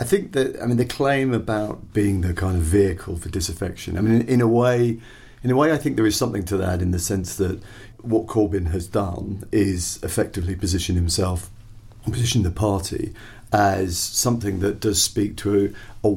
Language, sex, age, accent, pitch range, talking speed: English, male, 40-59, British, 95-110 Hz, 205 wpm